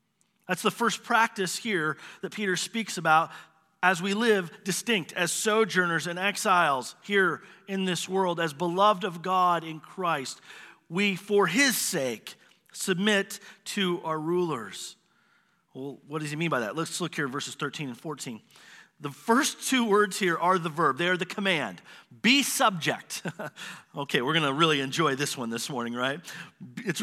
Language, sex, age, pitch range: English, male, 40-59, 160-200 Hz